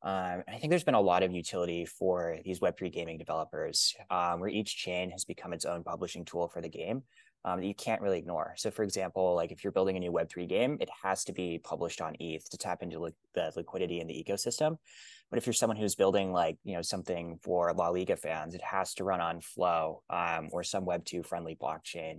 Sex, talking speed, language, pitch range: male, 230 wpm, English, 85-105 Hz